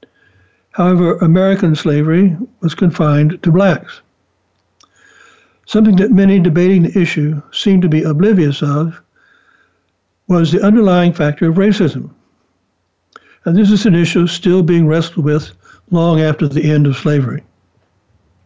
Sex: male